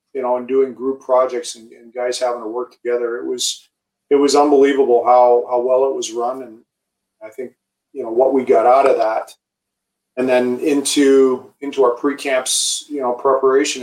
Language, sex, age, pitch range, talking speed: English, male, 40-59, 120-135 Hz, 190 wpm